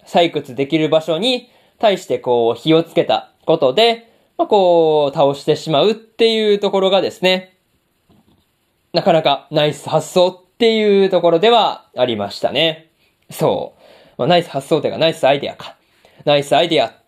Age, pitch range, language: 20-39, 145-195 Hz, Japanese